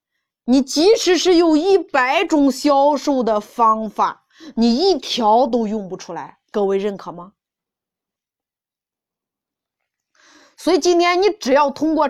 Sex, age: female, 20-39